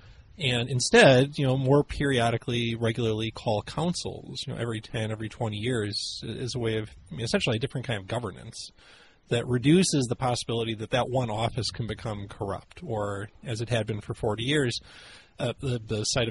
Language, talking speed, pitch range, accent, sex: English, 180 wpm, 110-135 Hz, American, male